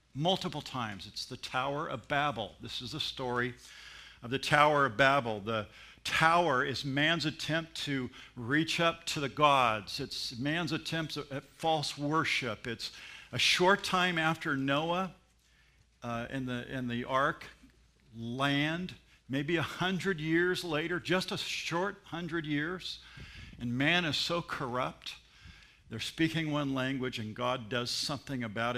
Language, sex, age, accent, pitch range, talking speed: English, male, 50-69, American, 125-160 Hz, 145 wpm